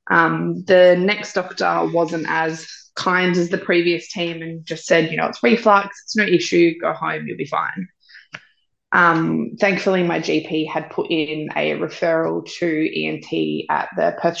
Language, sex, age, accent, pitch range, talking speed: English, female, 20-39, Australian, 165-220 Hz, 165 wpm